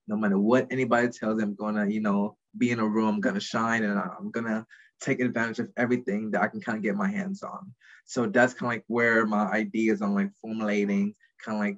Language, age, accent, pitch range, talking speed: English, 20-39, American, 105-130 Hz, 240 wpm